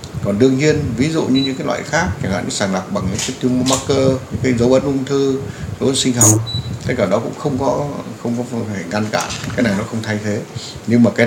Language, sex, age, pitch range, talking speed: Vietnamese, male, 60-79, 105-130 Hz, 260 wpm